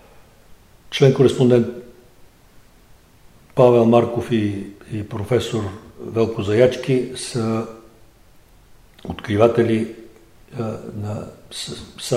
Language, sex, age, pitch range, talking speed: Bulgarian, male, 60-79, 110-125 Hz, 75 wpm